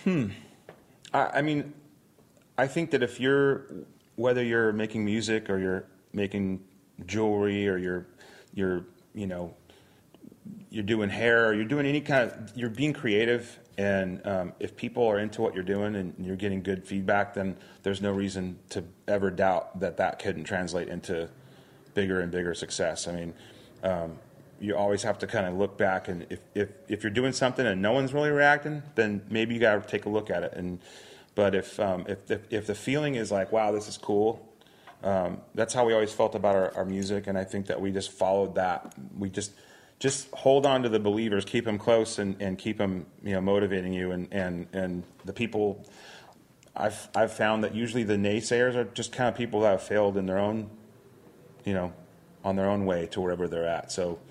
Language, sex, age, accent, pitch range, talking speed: English, male, 30-49, American, 95-115 Hz, 200 wpm